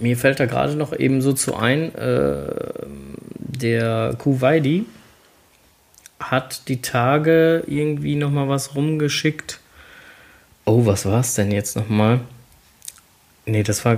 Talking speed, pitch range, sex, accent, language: 120 wpm, 115-150 Hz, male, German, German